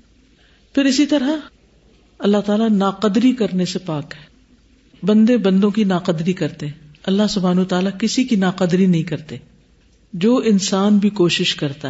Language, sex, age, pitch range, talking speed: Urdu, female, 50-69, 165-235 Hz, 140 wpm